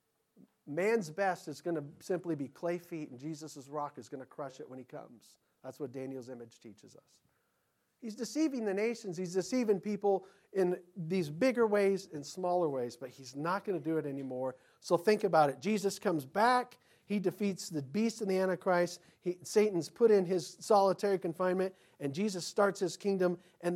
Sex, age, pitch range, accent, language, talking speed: male, 50-69, 155-205 Hz, American, English, 190 wpm